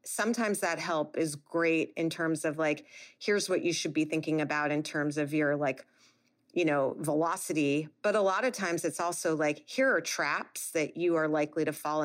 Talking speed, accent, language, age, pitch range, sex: 205 wpm, American, English, 30-49, 155-195 Hz, female